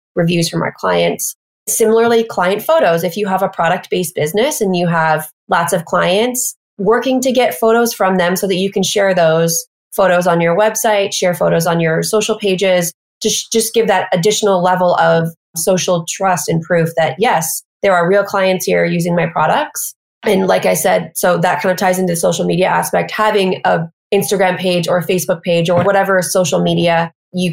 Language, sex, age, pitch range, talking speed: English, female, 20-39, 175-210 Hz, 190 wpm